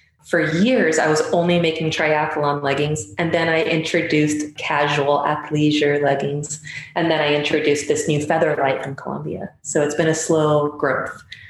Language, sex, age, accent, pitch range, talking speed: English, female, 20-39, American, 150-175 Hz, 160 wpm